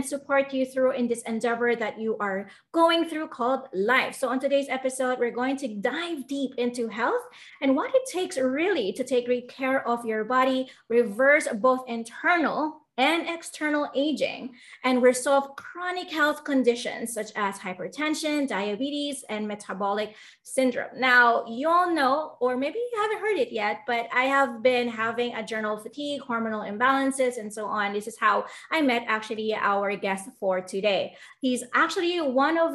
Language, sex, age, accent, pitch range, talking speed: English, female, 20-39, Filipino, 230-285 Hz, 170 wpm